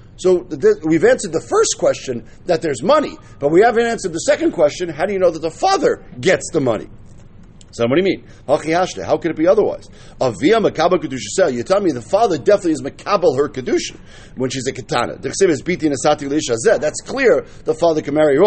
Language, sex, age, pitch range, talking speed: English, male, 50-69, 140-200 Hz, 180 wpm